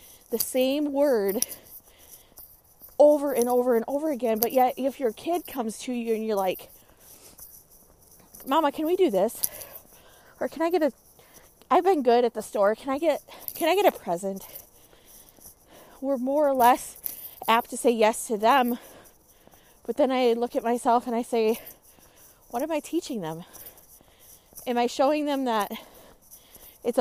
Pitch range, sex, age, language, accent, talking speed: 215-270 Hz, female, 20-39, English, American, 165 wpm